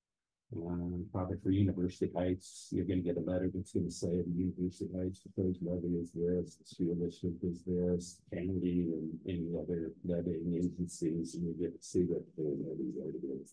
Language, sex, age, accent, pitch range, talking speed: English, male, 50-69, American, 85-105 Hz, 190 wpm